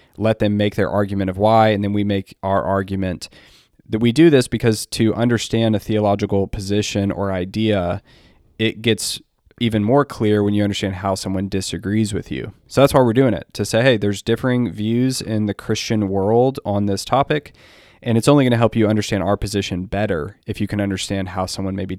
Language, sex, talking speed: English, male, 205 wpm